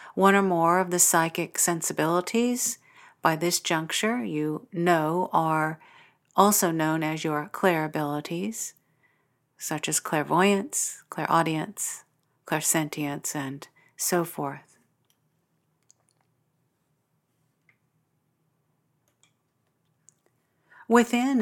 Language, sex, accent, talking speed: English, female, American, 80 wpm